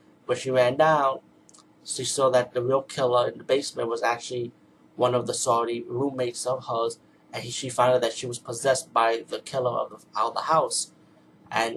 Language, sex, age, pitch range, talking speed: English, male, 30-49, 120-145 Hz, 210 wpm